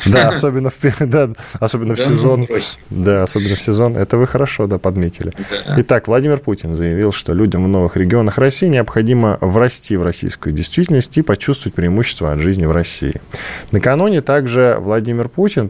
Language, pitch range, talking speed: Russian, 90-125 Hz, 150 wpm